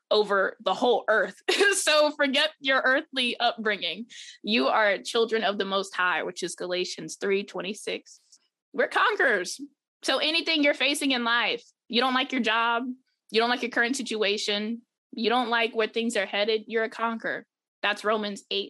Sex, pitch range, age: female, 185-250 Hz, 20-39